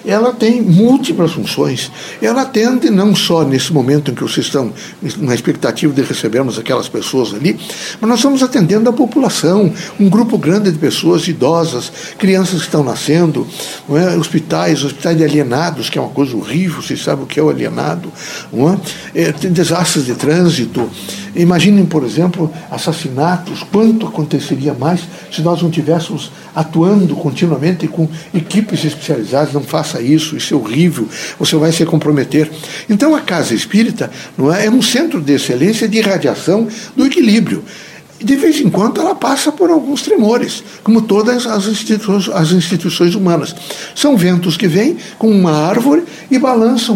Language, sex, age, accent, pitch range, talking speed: Portuguese, male, 60-79, Brazilian, 160-220 Hz, 160 wpm